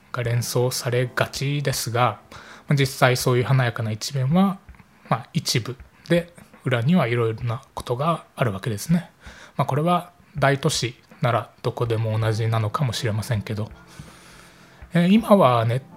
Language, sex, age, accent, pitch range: Japanese, male, 20-39, native, 115-165 Hz